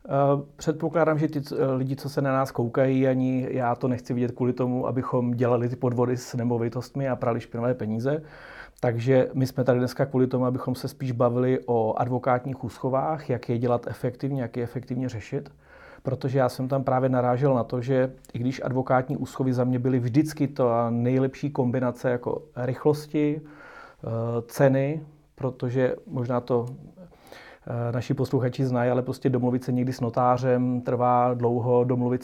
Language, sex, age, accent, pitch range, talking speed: Czech, male, 30-49, native, 125-135 Hz, 165 wpm